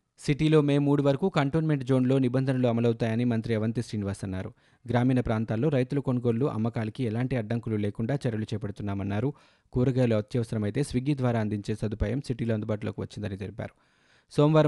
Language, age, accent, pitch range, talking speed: Telugu, 20-39, native, 110-135 Hz, 135 wpm